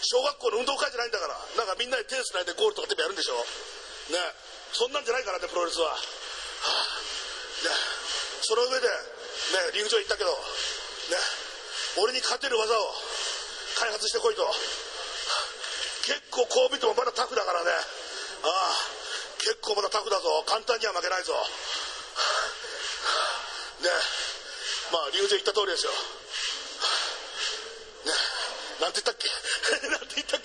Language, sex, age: Japanese, male, 40-59